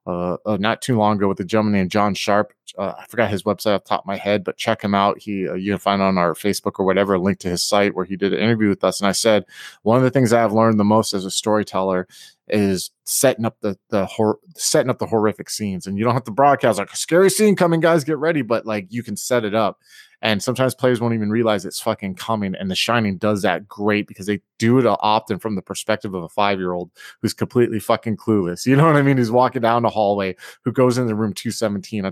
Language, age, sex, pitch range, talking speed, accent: English, 20-39, male, 100-130 Hz, 265 wpm, American